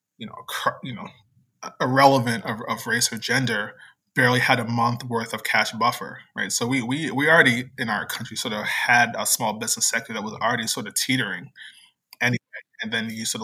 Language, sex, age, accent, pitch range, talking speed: English, male, 20-39, American, 115-130 Hz, 200 wpm